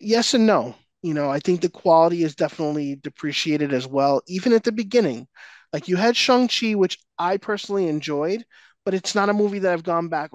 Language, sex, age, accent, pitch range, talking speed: English, male, 20-39, American, 140-200 Hz, 205 wpm